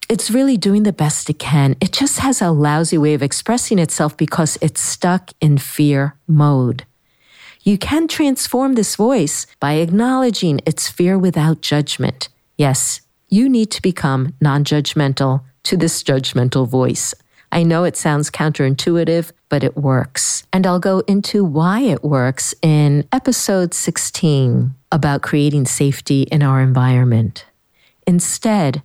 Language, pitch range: English, 145-200 Hz